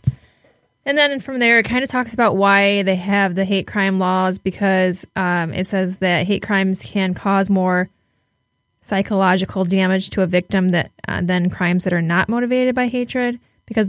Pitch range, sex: 175-205 Hz, female